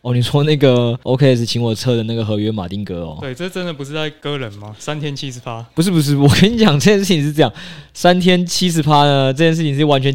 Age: 20-39